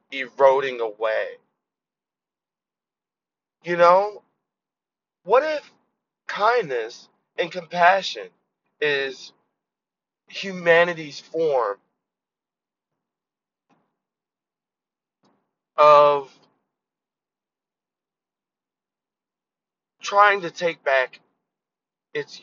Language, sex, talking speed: English, male, 50 wpm